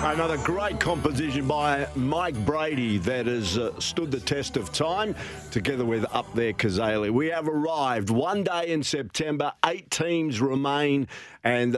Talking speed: 155 wpm